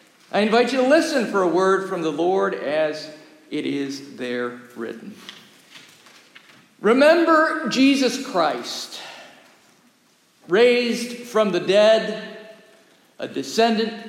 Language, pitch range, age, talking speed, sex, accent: English, 180-245 Hz, 50-69, 105 wpm, male, American